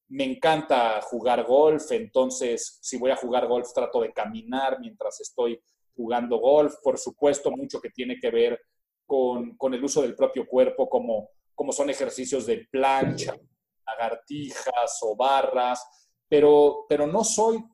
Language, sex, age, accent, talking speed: Spanish, male, 40-59, Mexican, 150 wpm